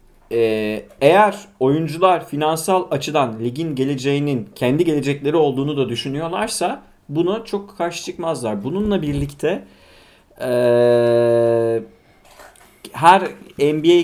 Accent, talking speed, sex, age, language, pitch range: native, 90 wpm, male, 40-59, Turkish, 115-165 Hz